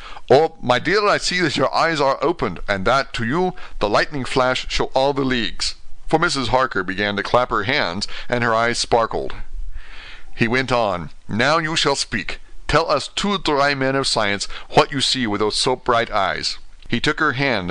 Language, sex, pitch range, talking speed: English, male, 125-165 Hz, 200 wpm